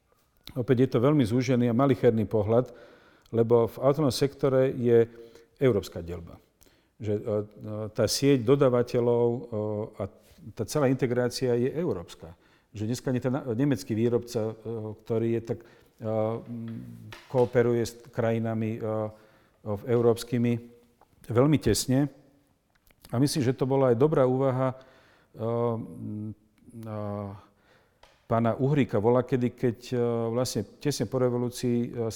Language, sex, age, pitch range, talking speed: Slovak, male, 50-69, 110-125 Hz, 110 wpm